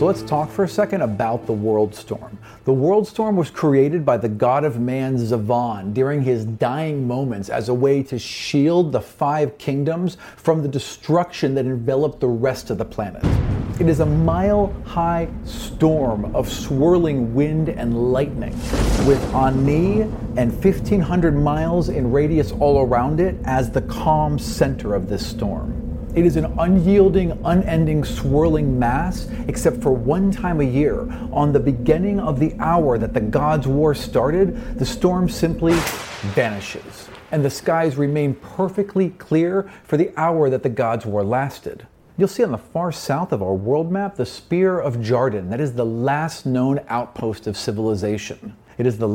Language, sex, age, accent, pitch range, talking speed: English, male, 40-59, American, 120-165 Hz, 165 wpm